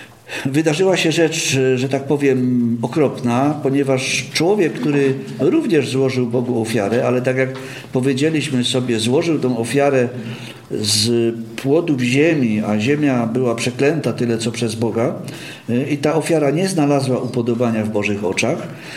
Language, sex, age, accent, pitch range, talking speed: Polish, male, 50-69, native, 120-155 Hz, 135 wpm